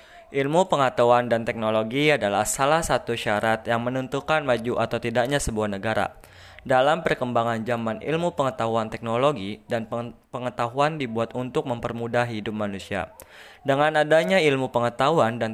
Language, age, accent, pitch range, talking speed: Indonesian, 20-39, native, 115-140 Hz, 125 wpm